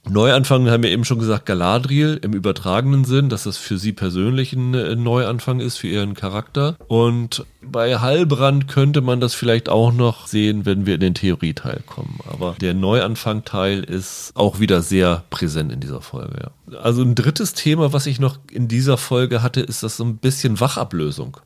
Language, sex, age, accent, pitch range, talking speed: German, male, 40-59, German, 95-125 Hz, 180 wpm